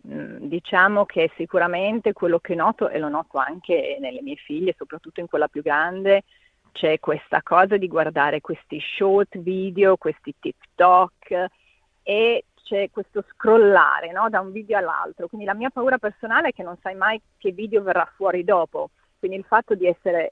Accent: native